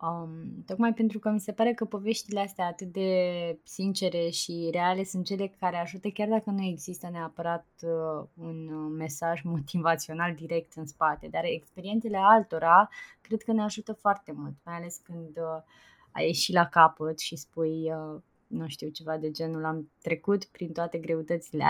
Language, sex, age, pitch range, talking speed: Romanian, female, 20-39, 165-195 Hz, 160 wpm